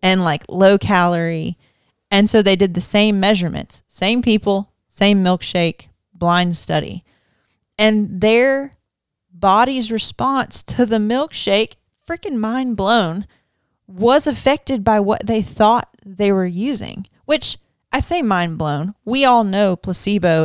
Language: English